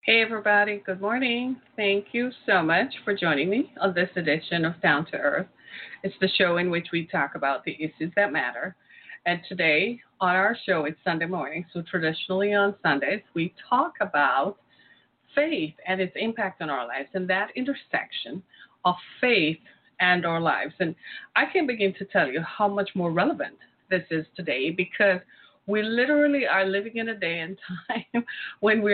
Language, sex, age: English, female, 30-49